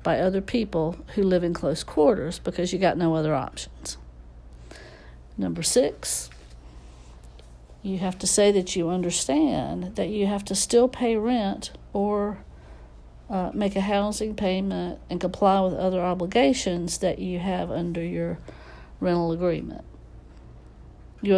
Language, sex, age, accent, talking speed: English, female, 60-79, American, 140 wpm